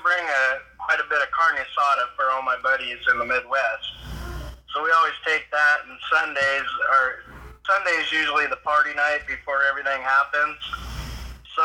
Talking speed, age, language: 165 wpm, 20-39, English